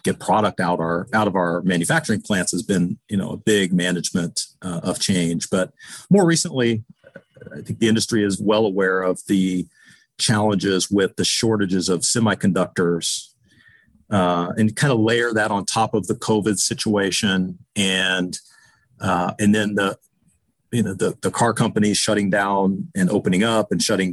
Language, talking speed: English, 165 wpm